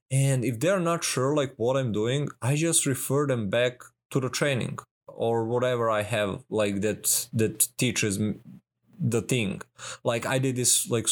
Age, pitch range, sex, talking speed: 20-39, 115-150 Hz, male, 180 wpm